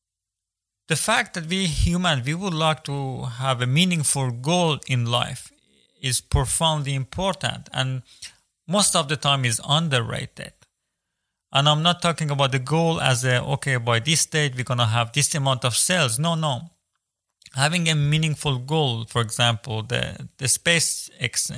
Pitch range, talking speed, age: 125-165 Hz, 160 wpm, 40-59